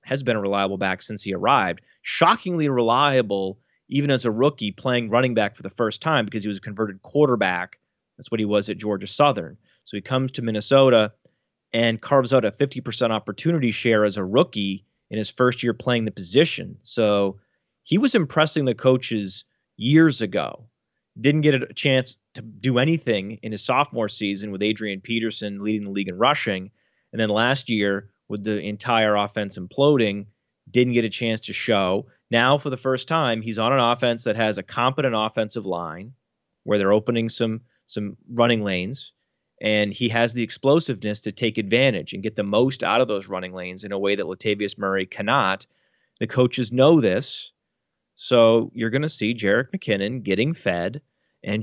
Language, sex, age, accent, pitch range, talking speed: English, male, 30-49, American, 105-130 Hz, 185 wpm